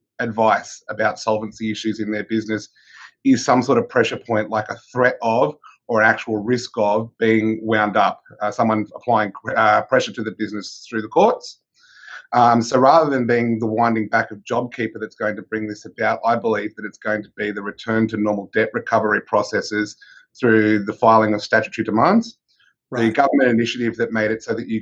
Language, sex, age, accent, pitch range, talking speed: English, male, 30-49, Australian, 110-120 Hz, 195 wpm